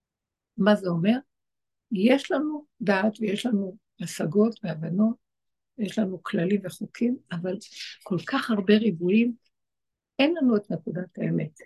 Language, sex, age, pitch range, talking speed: Hebrew, female, 60-79, 195-240 Hz, 125 wpm